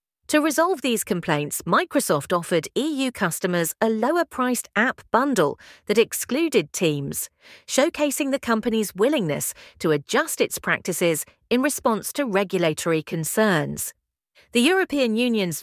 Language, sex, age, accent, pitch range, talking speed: English, female, 40-59, British, 180-245 Hz, 120 wpm